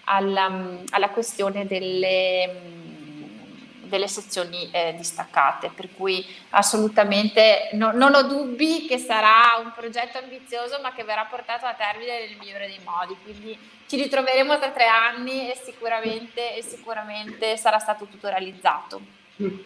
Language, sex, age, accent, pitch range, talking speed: Italian, female, 20-39, native, 210-255 Hz, 135 wpm